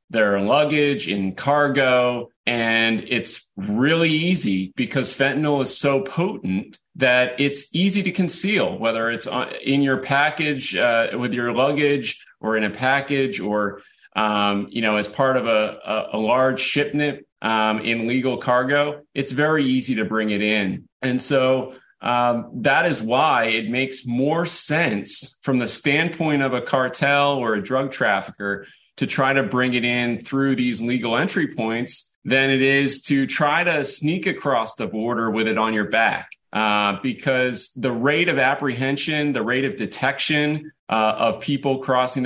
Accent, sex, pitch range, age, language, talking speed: American, male, 115-140 Hz, 30-49, English, 160 wpm